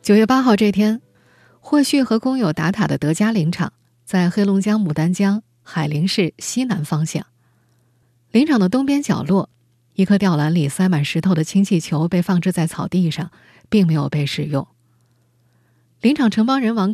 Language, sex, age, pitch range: Chinese, female, 20-39, 155-220 Hz